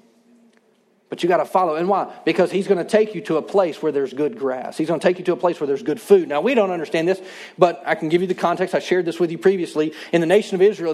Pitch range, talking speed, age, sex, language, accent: 165-210 Hz, 300 wpm, 40-59, male, English, American